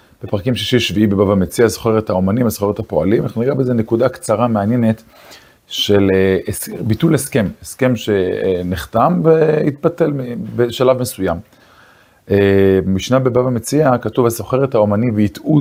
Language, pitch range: Hebrew, 100-125 Hz